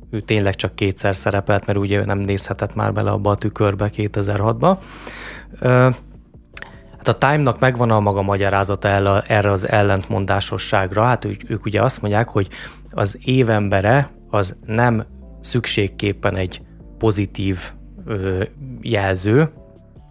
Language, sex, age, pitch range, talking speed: Hungarian, male, 20-39, 100-115 Hz, 115 wpm